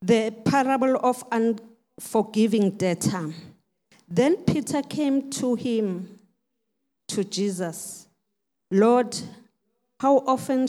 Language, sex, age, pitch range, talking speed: English, female, 50-69, 195-250 Hz, 85 wpm